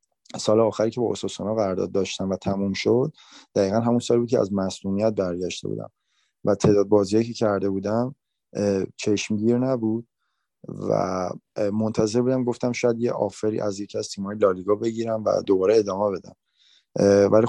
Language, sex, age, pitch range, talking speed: English, male, 30-49, 100-115 Hz, 155 wpm